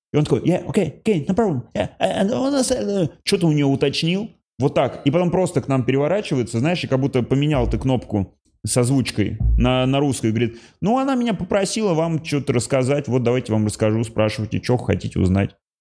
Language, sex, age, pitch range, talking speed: Russian, male, 30-49, 110-155 Hz, 195 wpm